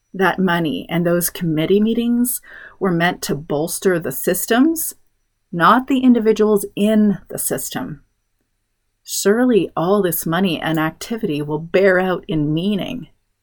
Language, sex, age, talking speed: English, female, 30-49, 130 wpm